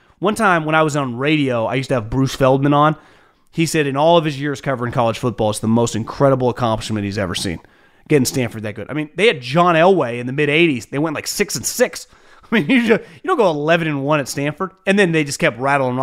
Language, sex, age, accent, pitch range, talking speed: English, male, 30-49, American, 130-180 Hz, 260 wpm